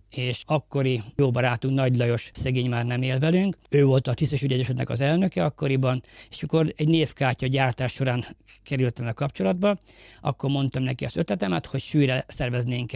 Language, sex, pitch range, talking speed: Hungarian, male, 125-150 Hz, 160 wpm